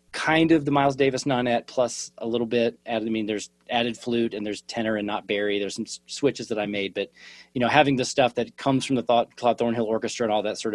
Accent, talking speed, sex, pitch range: American, 255 wpm, male, 105-125 Hz